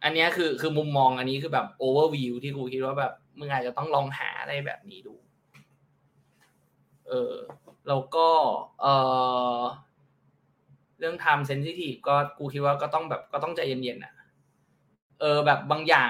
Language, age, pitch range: Thai, 20-39, 130-160 Hz